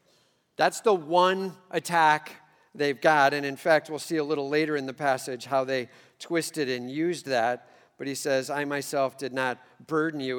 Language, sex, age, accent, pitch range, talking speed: English, male, 50-69, American, 145-185 Hz, 185 wpm